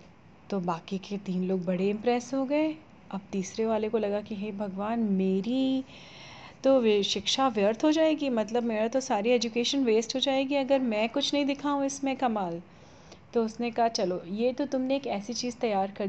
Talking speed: 185 wpm